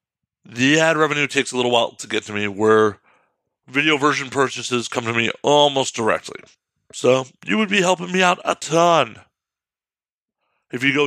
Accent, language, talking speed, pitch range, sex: American, English, 175 wpm, 120-155 Hz, male